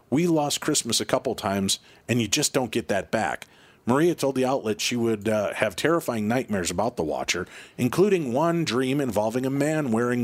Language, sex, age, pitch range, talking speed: English, male, 40-59, 105-140 Hz, 195 wpm